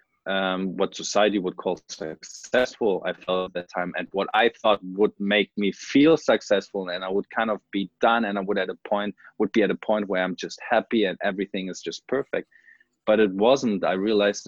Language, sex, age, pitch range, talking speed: English, male, 20-39, 95-115 Hz, 210 wpm